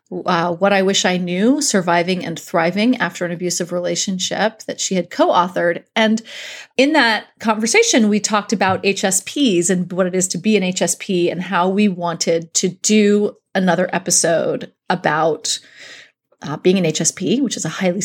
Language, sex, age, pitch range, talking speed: English, female, 30-49, 180-240 Hz, 165 wpm